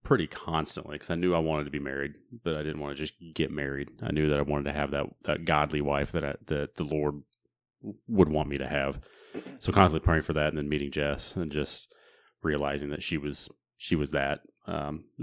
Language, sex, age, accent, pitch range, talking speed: English, male, 30-49, American, 75-85 Hz, 225 wpm